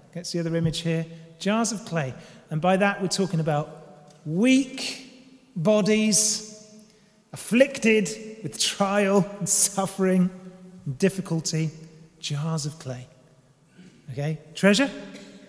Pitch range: 150-220 Hz